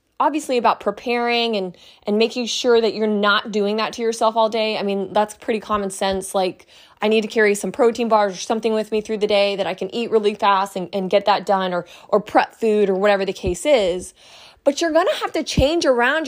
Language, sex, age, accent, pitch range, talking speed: English, female, 20-39, American, 205-260 Hz, 240 wpm